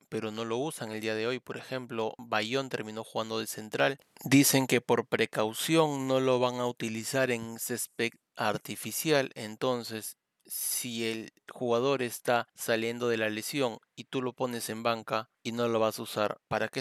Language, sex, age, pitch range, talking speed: Spanish, male, 30-49, 110-130 Hz, 180 wpm